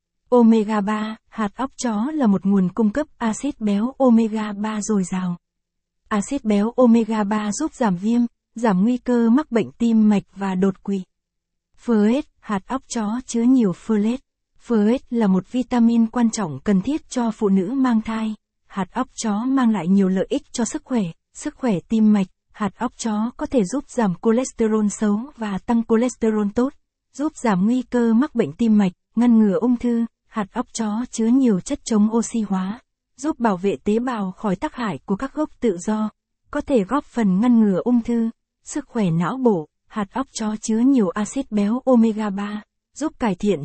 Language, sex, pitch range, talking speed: Vietnamese, female, 205-245 Hz, 190 wpm